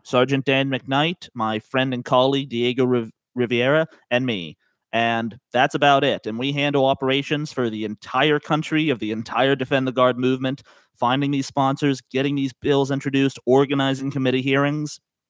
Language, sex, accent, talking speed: English, male, American, 155 wpm